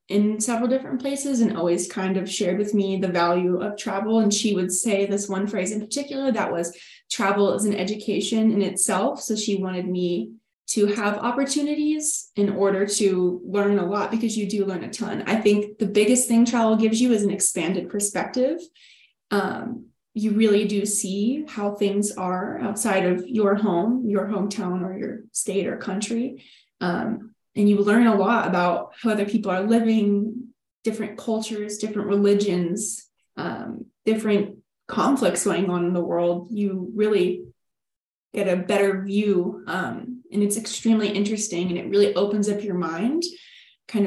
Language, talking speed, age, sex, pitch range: English, 170 wpm, 20-39, female, 195-225 Hz